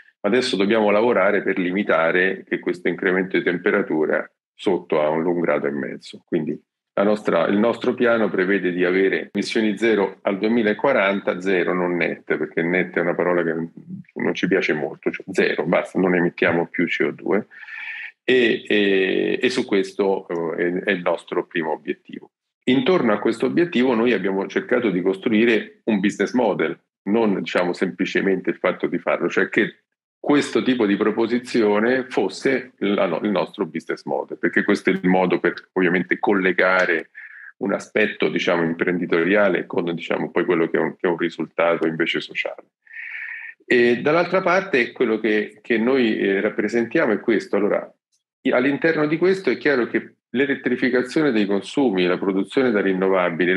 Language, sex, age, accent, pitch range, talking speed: Italian, male, 40-59, native, 95-130 Hz, 155 wpm